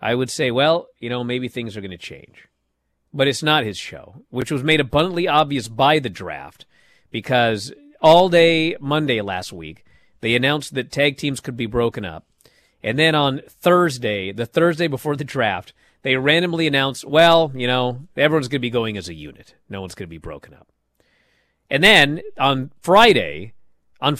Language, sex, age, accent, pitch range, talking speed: English, male, 40-59, American, 120-175 Hz, 185 wpm